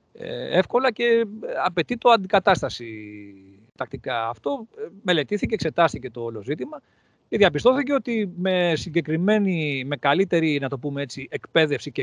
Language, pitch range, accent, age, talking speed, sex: Greek, 130-200 Hz, Spanish, 40-59, 115 wpm, male